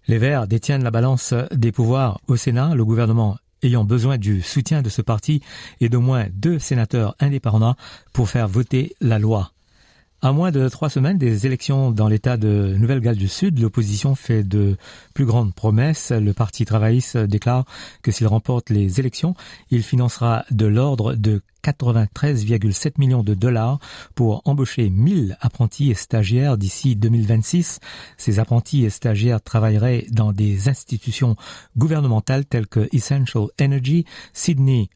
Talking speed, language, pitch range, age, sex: 150 wpm, French, 110-135 Hz, 50-69, male